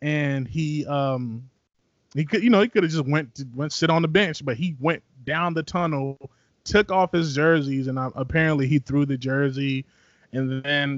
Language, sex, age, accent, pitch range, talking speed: English, male, 20-39, American, 130-155 Hz, 200 wpm